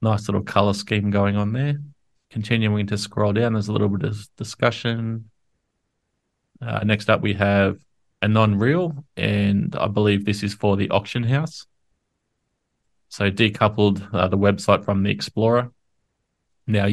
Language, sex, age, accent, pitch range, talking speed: English, male, 20-39, Australian, 100-110 Hz, 150 wpm